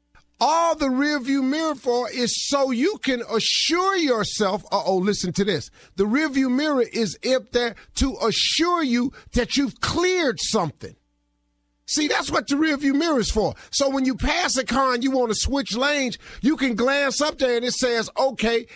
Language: English